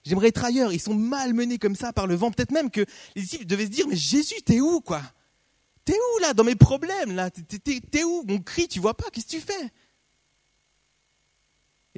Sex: male